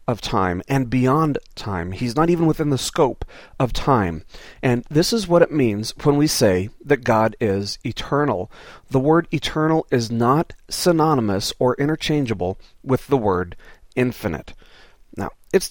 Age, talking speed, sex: 40-59, 155 wpm, male